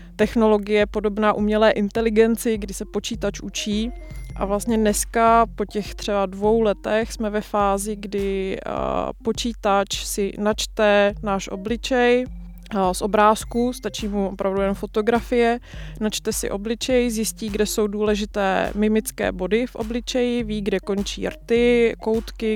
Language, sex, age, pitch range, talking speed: Czech, female, 20-39, 200-225 Hz, 130 wpm